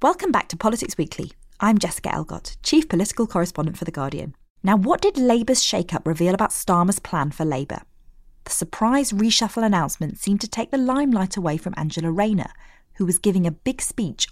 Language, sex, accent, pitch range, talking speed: English, female, British, 170-230 Hz, 185 wpm